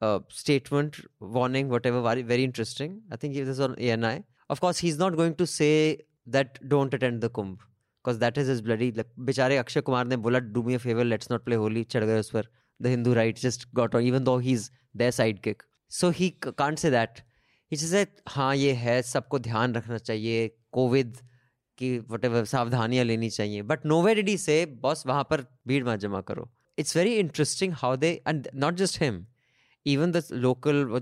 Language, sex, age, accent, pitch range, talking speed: English, male, 20-39, Indian, 115-145 Hz, 190 wpm